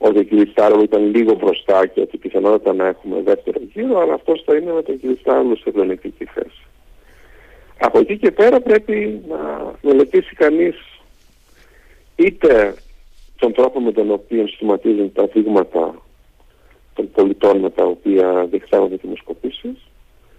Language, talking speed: Greek, 145 wpm